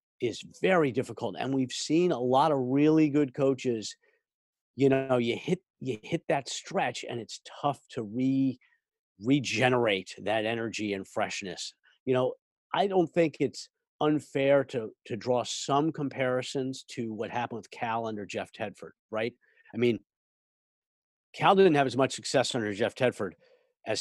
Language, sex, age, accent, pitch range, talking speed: English, male, 50-69, American, 115-155 Hz, 155 wpm